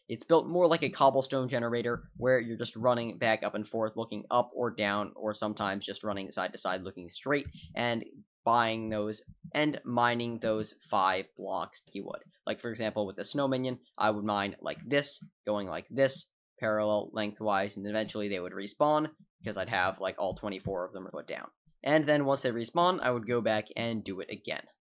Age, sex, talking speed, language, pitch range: 10-29, male, 200 wpm, English, 105-145 Hz